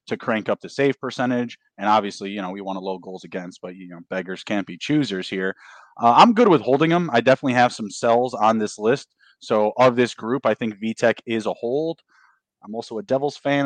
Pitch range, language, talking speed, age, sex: 110-145 Hz, English, 235 wpm, 20-39, male